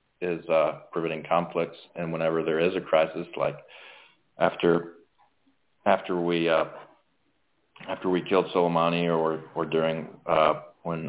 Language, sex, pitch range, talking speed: English, male, 80-85 Hz, 130 wpm